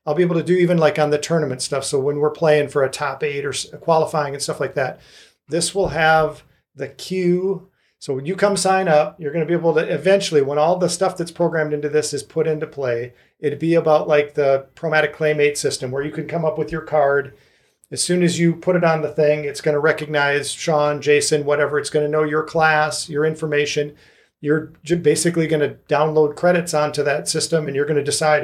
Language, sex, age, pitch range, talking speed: English, male, 40-59, 145-165 Hz, 220 wpm